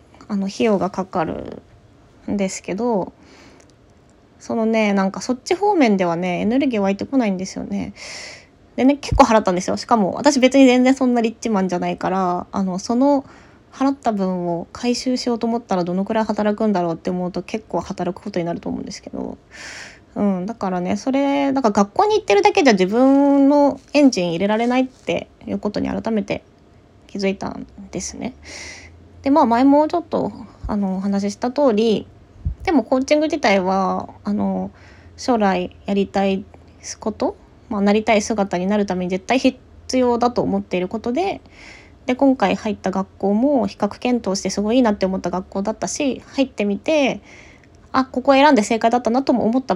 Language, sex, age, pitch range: Japanese, female, 20-39, 190-255 Hz